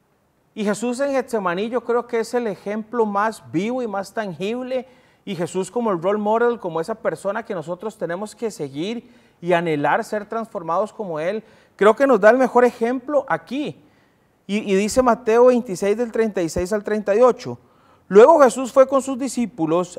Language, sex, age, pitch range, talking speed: Spanish, male, 30-49, 185-245 Hz, 175 wpm